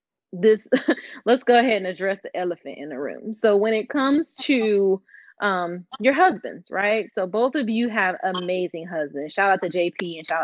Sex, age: female, 30-49